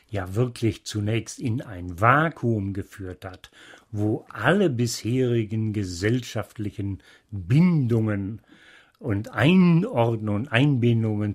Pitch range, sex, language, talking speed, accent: 110-130 Hz, male, German, 85 wpm, German